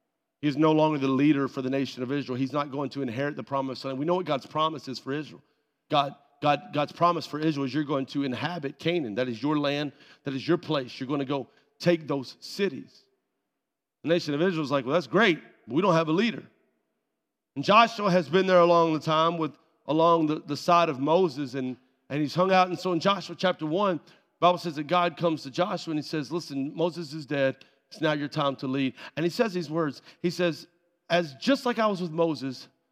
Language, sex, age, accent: English, male, 40-59, American